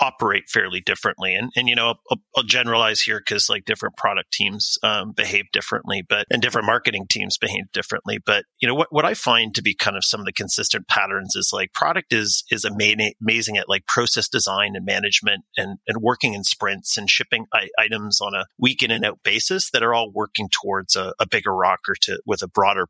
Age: 30-49